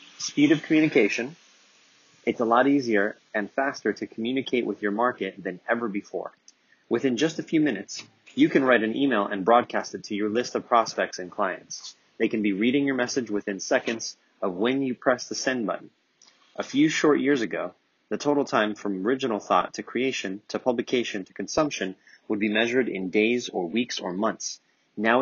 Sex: male